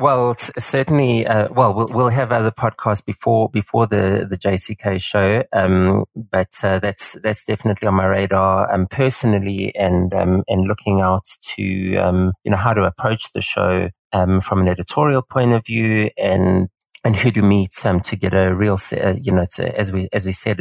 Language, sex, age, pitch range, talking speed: English, male, 30-49, 95-110 Hz, 200 wpm